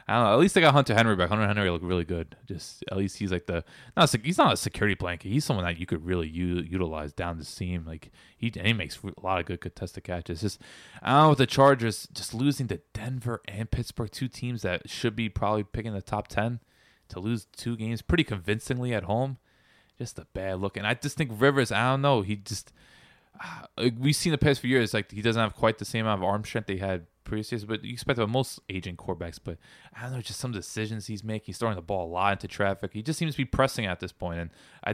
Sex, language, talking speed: male, English, 260 wpm